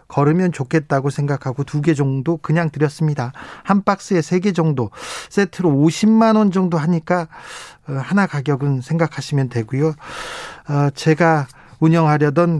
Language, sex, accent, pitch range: Korean, male, native, 140-175 Hz